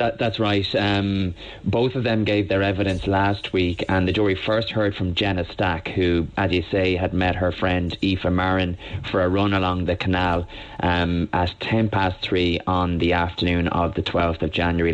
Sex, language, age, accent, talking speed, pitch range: male, English, 30-49, Irish, 195 wpm, 90-100 Hz